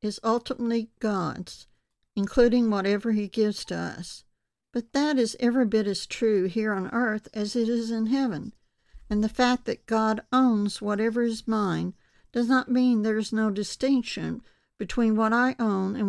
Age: 60-79